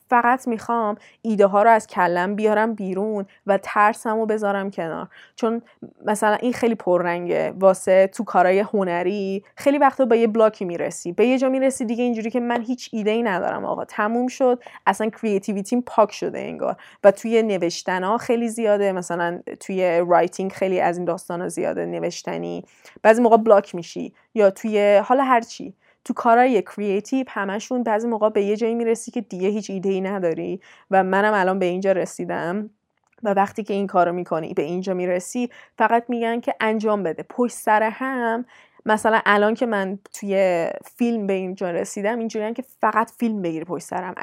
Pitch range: 190-235 Hz